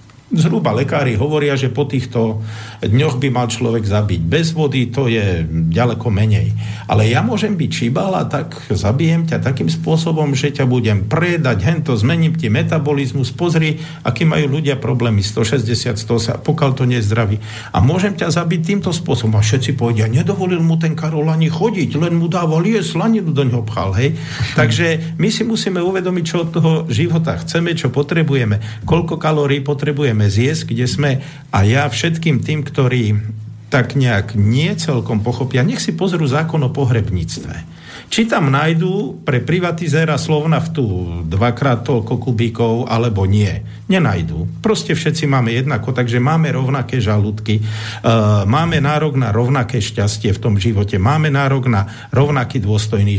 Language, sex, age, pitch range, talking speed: Slovak, male, 50-69, 115-155 Hz, 155 wpm